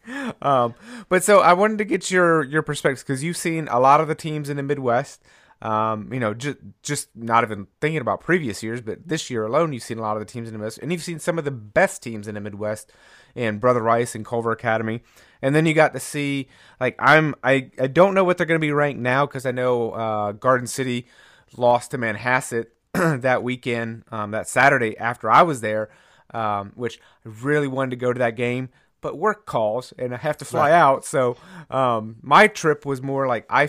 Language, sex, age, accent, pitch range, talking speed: English, male, 30-49, American, 110-140 Hz, 225 wpm